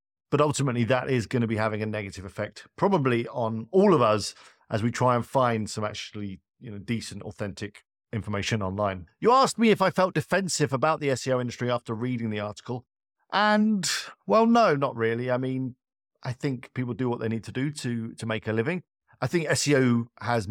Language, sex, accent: English, male, British